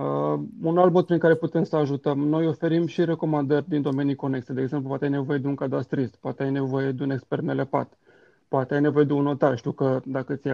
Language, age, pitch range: Romanian, 30-49, 135-155 Hz